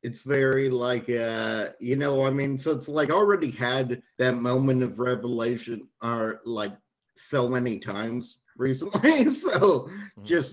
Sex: male